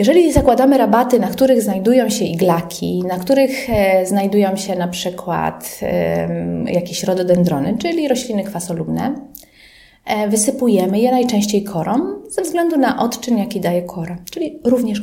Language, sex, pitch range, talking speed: Polish, female, 190-260 Hz, 130 wpm